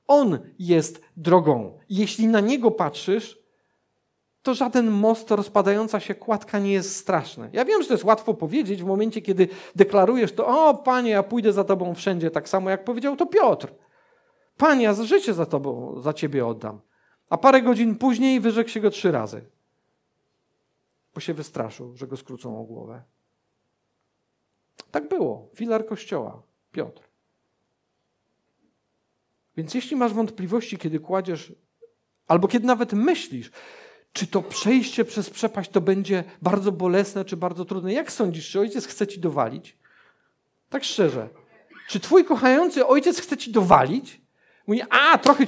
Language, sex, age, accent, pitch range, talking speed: Polish, male, 50-69, native, 180-240 Hz, 150 wpm